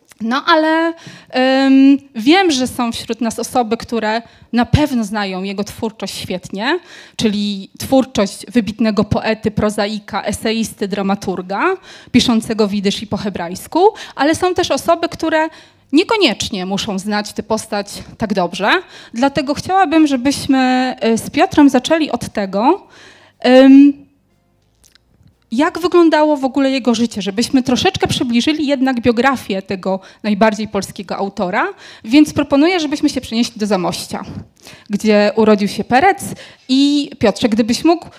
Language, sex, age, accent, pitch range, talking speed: Polish, female, 20-39, native, 210-275 Hz, 120 wpm